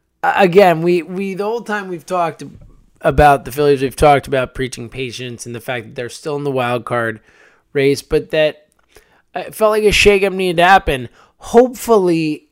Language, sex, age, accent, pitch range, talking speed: English, male, 20-39, American, 125-175 Hz, 185 wpm